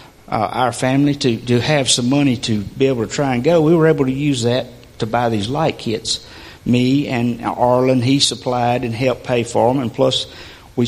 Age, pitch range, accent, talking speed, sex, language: 50-69, 115-145 Hz, American, 215 wpm, male, English